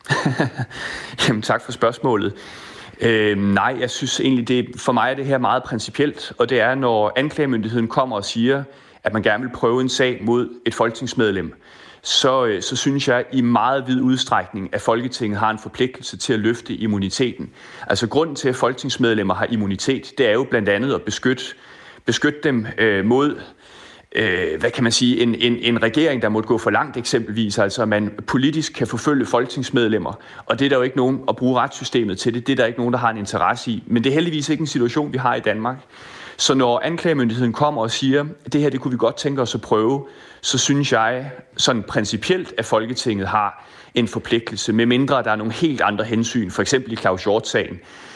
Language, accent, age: Danish, native, 30-49